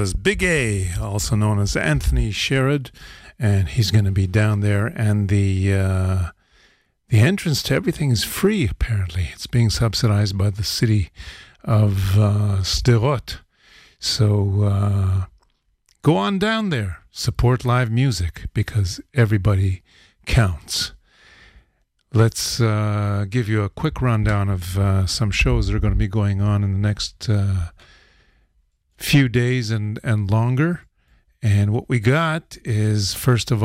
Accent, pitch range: American, 100-120 Hz